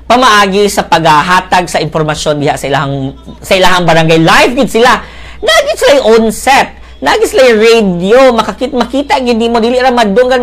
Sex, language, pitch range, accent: female, Filipino, 175-240 Hz, native